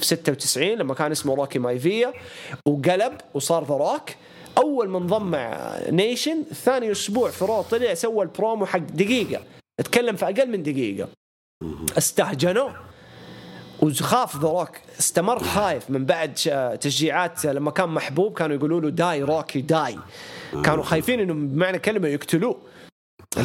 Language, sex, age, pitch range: English, male, 30-49, 150-225 Hz